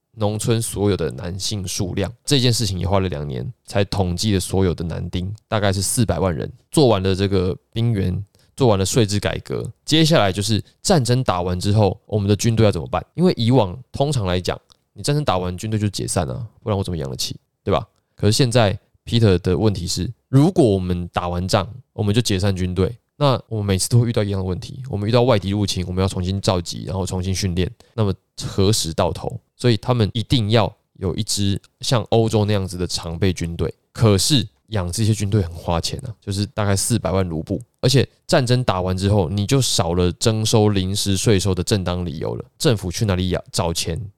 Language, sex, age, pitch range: Chinese, male, 20-39, 95-115 Hz